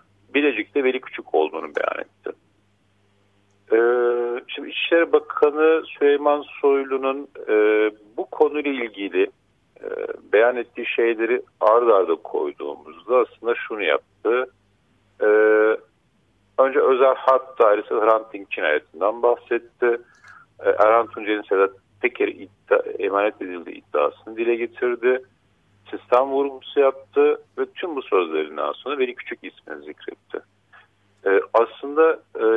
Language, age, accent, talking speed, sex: Turkish, 50-69, native, 110 wpm, male